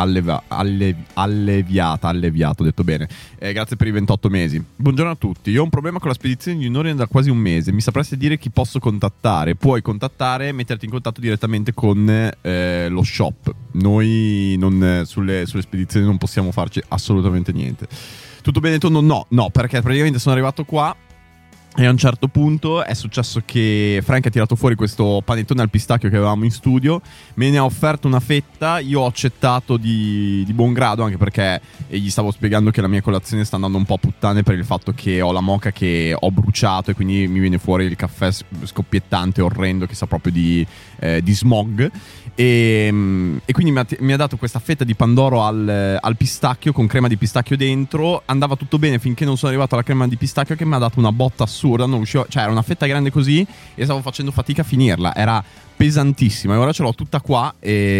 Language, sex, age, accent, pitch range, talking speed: Italian, male, 20-39, native, 100-130 Hz, 210 wpm